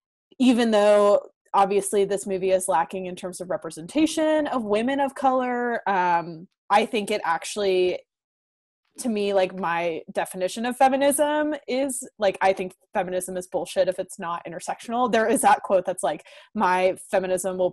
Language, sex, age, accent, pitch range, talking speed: English, female, 20-39, American, 180-215 Hz, 160 wpm